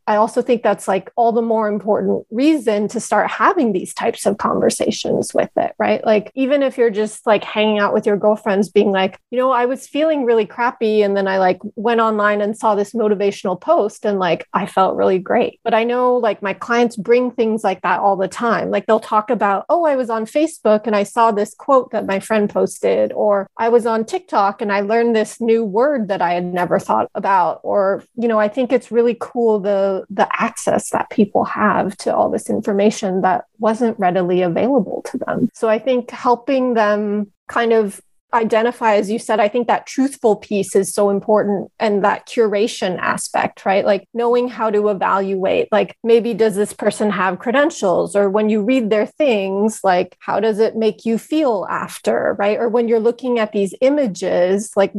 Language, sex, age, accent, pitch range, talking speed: English, female, 30-49, American, 205-235 Hz, 205 wpm